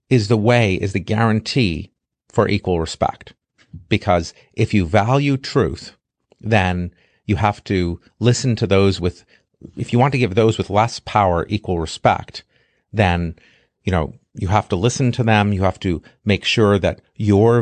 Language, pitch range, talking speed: English, 90-110 Hz, 165 wpm